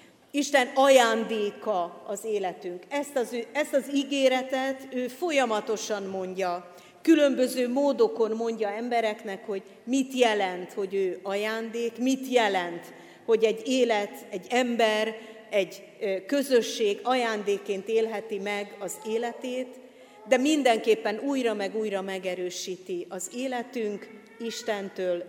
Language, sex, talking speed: Hungarian, female, 105 wpm